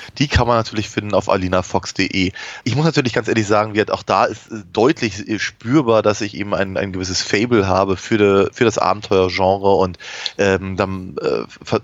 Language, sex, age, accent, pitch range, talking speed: German, male, 30-49, German, 100-125 Hz, 180 wpm